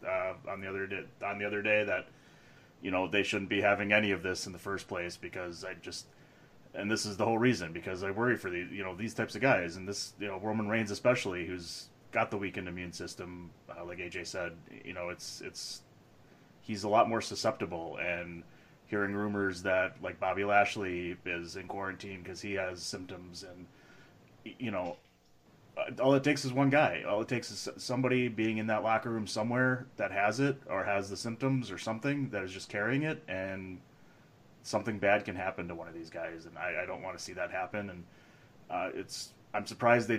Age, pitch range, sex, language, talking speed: 30-49, 95-110 Hz, male, English, 210 wpm